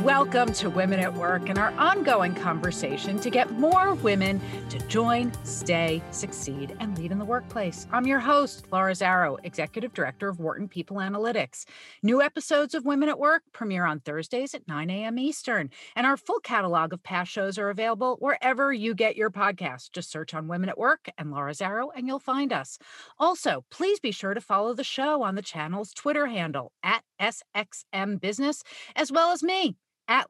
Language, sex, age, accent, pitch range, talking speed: English, female, 40-59, American, 180-265 Hz, 185 wpm